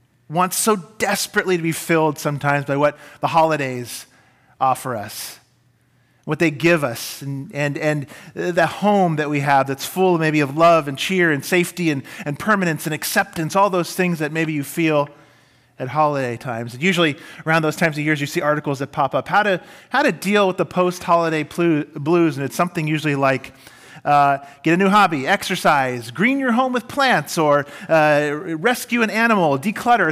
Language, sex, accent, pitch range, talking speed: English, male, American, 130-170 Hz, 185 wpm